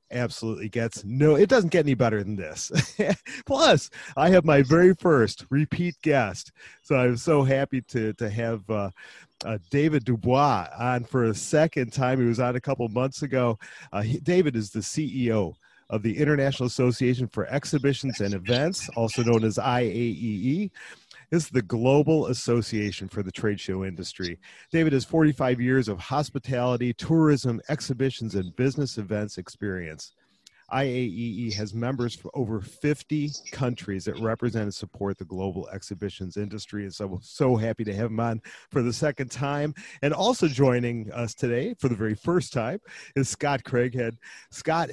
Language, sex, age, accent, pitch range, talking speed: English, male, 40-59, American, 110-145 Hz, 165 wpm